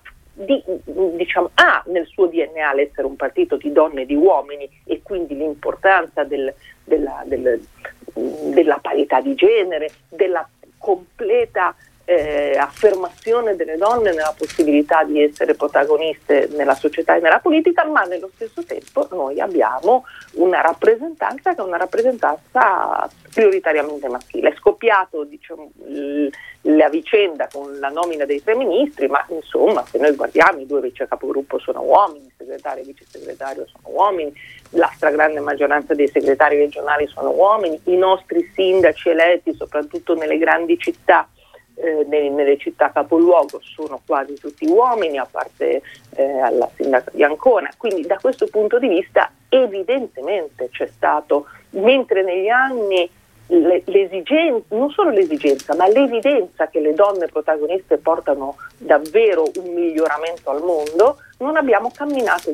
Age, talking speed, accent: 40-59, 140 wpm, native